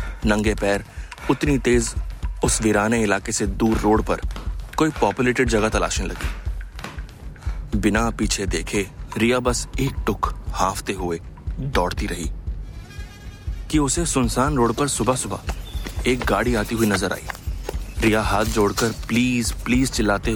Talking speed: 135 wpm